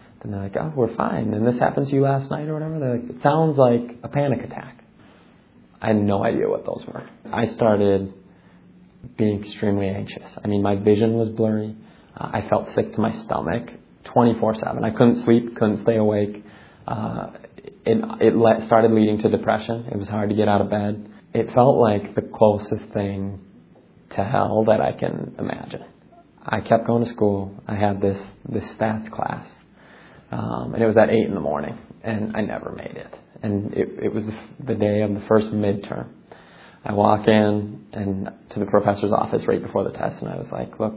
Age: 20-39